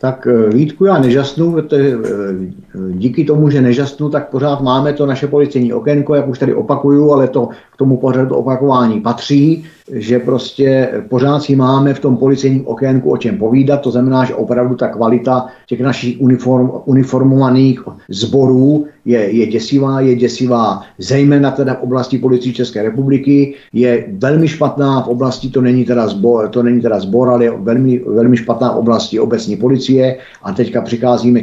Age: 50-69